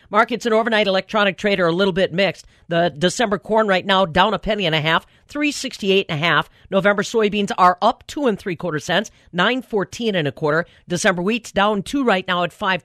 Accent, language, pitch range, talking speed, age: American, English, 170-220 Hz, 225 wpm, 40-59